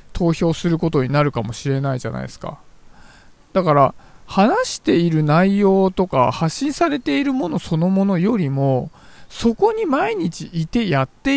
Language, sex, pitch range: Japanese, male, 150-250 Hz